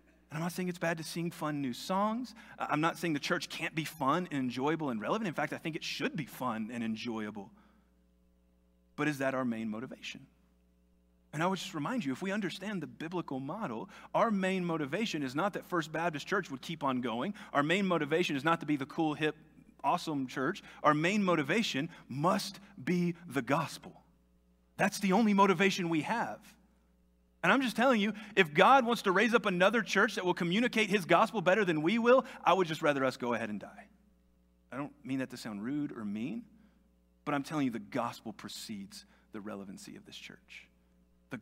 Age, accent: 30-49, American